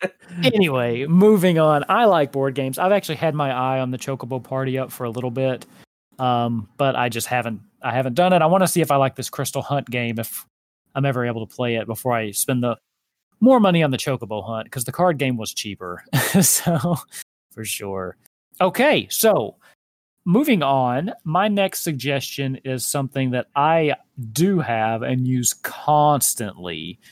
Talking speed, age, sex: 185 wpm, 30-49, male